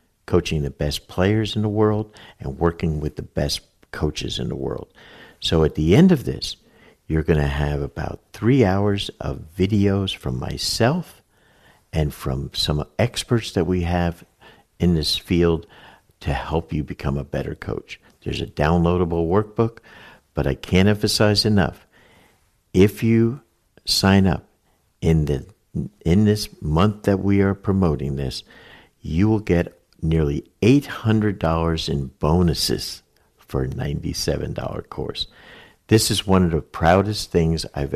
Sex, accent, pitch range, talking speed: male, American, 75-100 Hz, 145 wpm